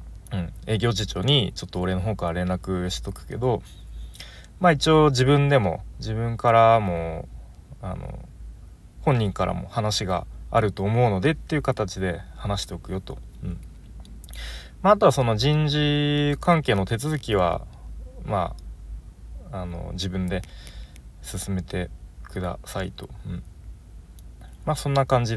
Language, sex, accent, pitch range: Japanese, male, native, 85-110 Hz